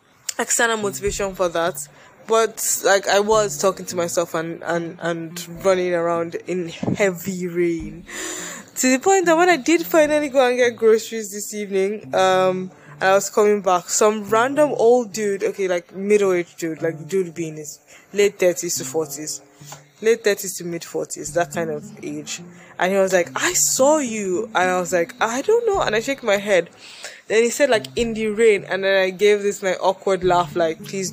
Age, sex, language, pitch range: 20-39, female, English, 170-215 Hz